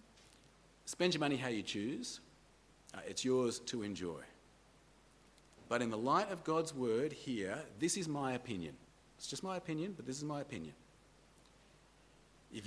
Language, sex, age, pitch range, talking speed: English, male, 40-59, 115-165 Hz, 150 wpm